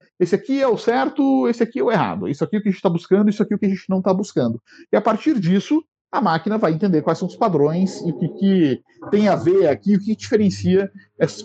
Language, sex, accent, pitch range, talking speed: English, male, Brazilian, 150-210 Hz, 280 wpm